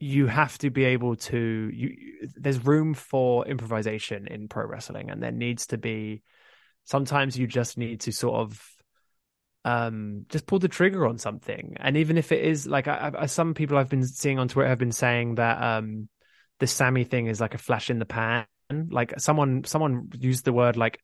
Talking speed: 205 wpm